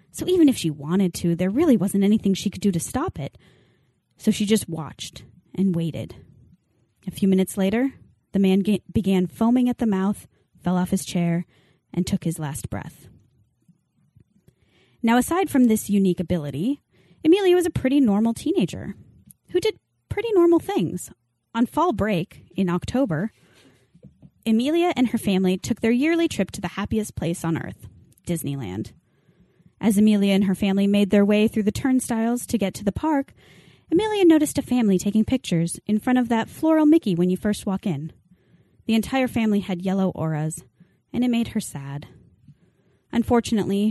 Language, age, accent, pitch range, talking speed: English, 20-39, American, 175-250 Hz, 170 wpm